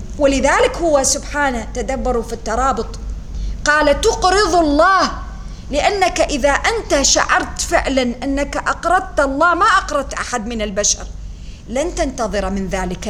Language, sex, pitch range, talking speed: English, female, 215-330 Hz, 120 wpm